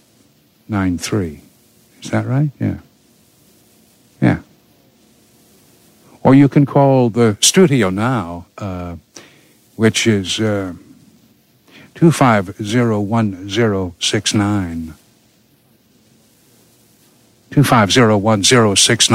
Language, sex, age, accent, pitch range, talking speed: English, male, 60-79, American, 100-120 Hz, 55 wpm